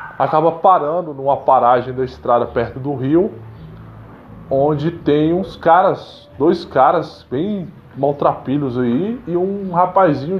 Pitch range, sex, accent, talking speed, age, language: 120-165 Hz, male, Brazilian, 120 wpm, 20-39, Portuguese